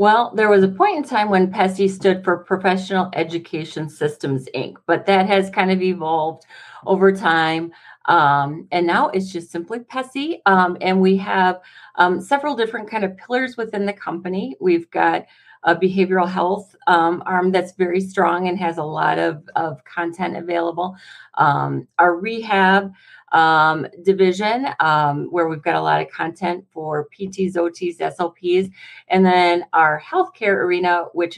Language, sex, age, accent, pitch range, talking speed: English, female, 40-59, American, 160-190 Hz, 160 wpm